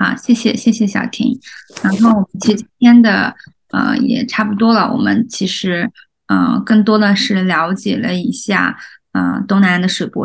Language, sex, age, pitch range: Chinese, female, 20-39, 195-230 Hz